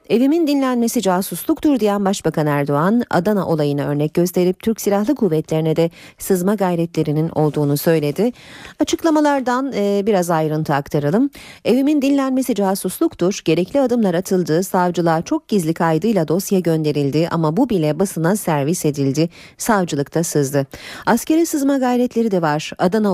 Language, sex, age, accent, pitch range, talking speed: Turkish, female, 40-59, native, 160-225 Hz, 125 wpm